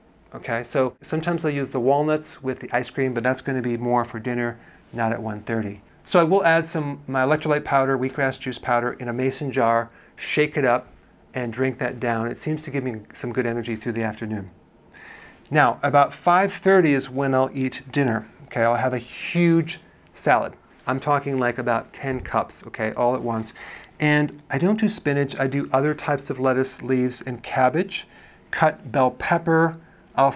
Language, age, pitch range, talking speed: English, 40-59, 120-150 Hz, 190 wpm